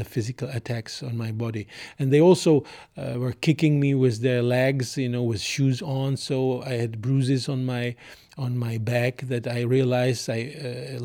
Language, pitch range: English, 125-140 Hz